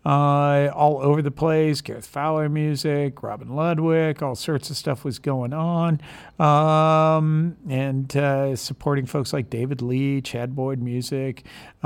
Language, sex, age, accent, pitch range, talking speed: English, male, 50-69, American, 135-160 Hz, 140 wpm